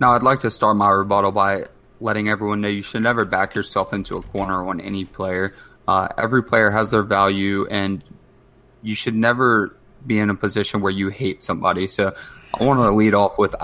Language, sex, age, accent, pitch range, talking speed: English, male, 20-39, American, 100-120 Hz, 205 wpm